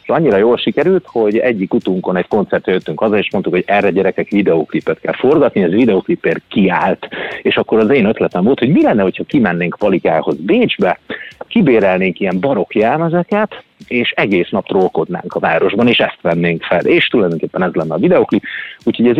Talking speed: 175 wpm